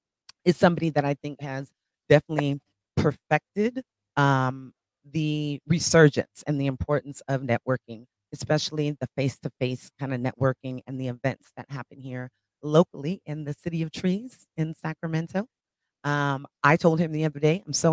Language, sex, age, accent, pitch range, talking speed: English, female, 30-49, American, 135-155 Hz, 150 wpm